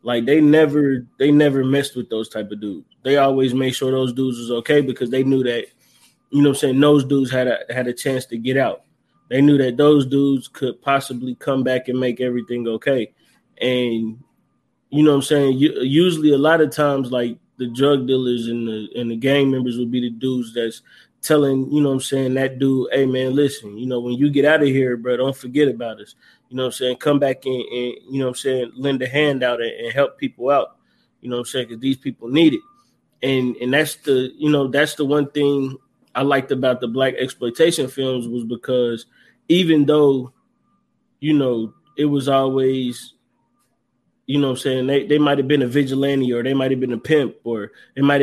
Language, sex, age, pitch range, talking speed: English, male, 20-39, 125-140 Hz, 225 wpm